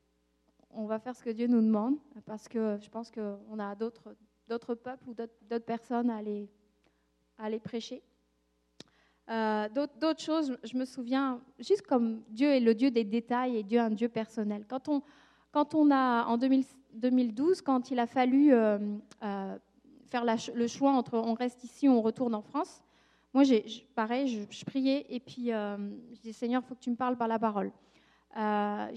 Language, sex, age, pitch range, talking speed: French, female, 20-39, 225-265 Hz, 200 wpm